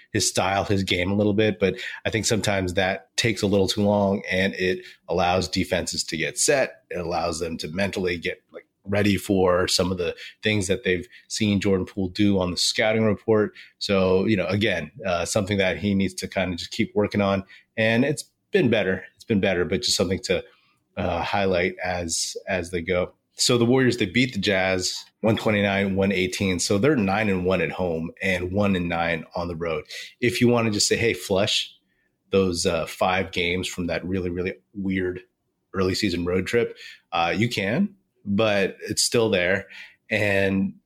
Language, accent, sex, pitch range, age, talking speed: English, American, male, 95-110 Hz, 30-49, 195 wpm